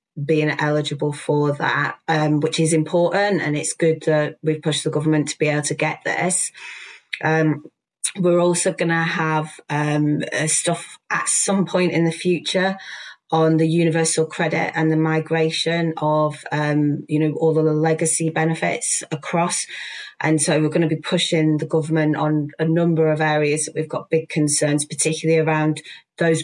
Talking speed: 165 wpm